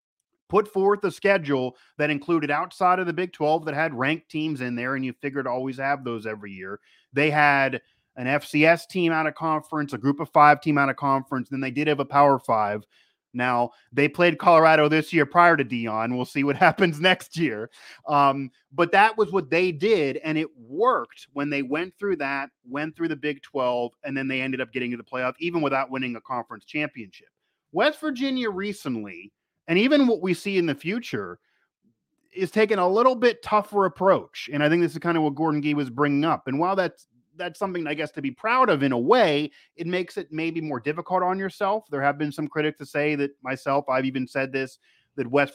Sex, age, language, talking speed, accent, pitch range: male, 30-49, English, 220 wpm, American, 130-165 Hz